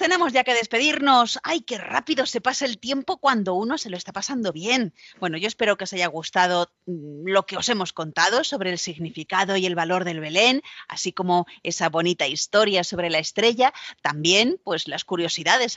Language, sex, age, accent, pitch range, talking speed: Spanish, female, 30-49, Spanish, 170-225 Hz, 190 wpm